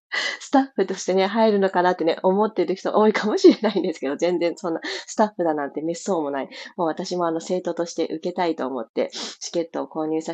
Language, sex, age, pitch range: Japanese, female, 20-39, 160-225 Hz